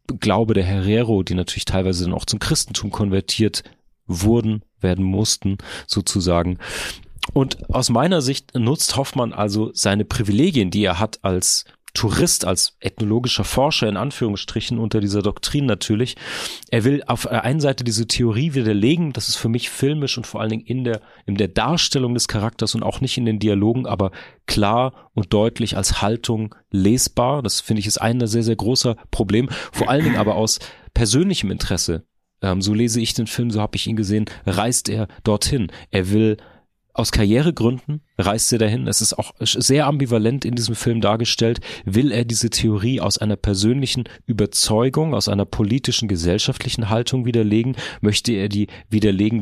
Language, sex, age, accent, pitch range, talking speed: German, male, 40-59, German, 105-120 Hz, 170 wpm